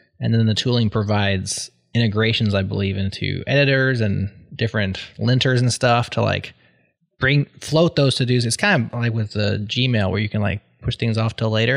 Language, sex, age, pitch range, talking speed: English, male, 20-39, 110-135 Hz, 190 wpm